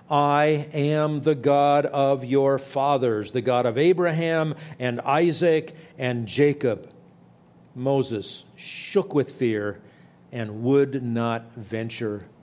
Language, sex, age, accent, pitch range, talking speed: English, male, 50-69, American, 115-155 Hz, 110 wpm